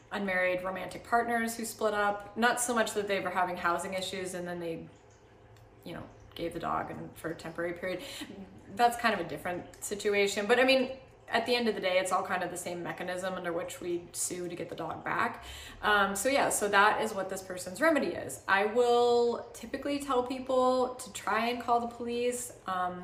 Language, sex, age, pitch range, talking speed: English, female, 20-39, 180-225 Hz, 210 wpm